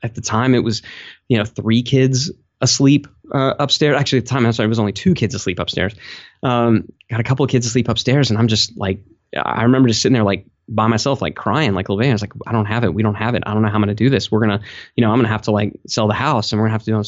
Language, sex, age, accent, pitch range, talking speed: English, male, 20-39, American, 110-145 Hz, 315 wpm